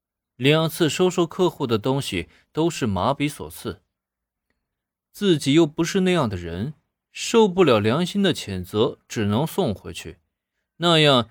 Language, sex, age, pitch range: Chinese, male, 20-39, 100-155 Hz